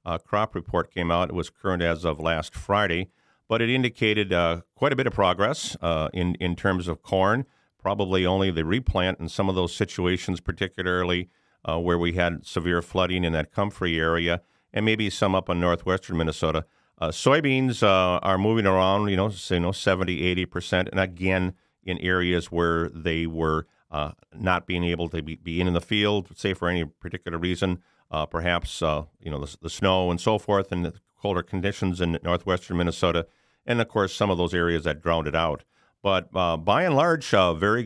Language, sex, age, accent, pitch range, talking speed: English, male, 50-69, American, 85-105 Hz, 205 wpm